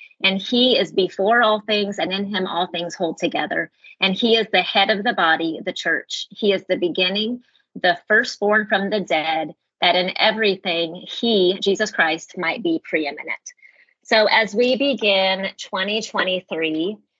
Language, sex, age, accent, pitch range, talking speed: English, female, 30-49, American, 170-210 Hz, 160 wpm